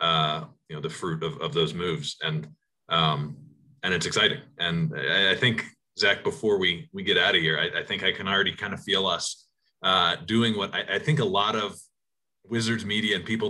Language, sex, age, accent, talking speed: English, male, 30-49, American, 220 wpm